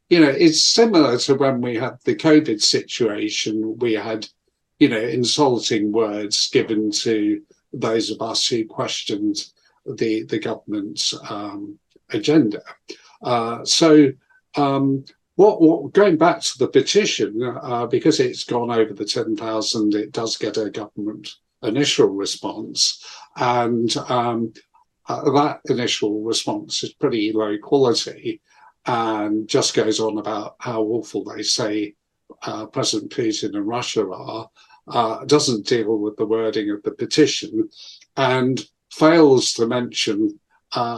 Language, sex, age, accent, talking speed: English, male, 50-69, British, 135 wpm